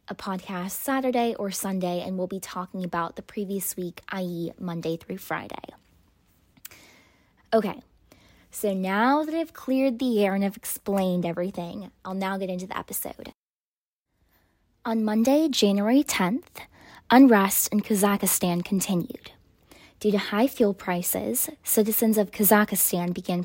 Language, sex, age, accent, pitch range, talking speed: English, female, 10-29, American, 180-220 Hz, 135 wpm